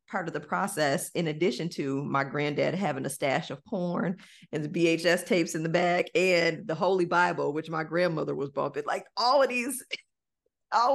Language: English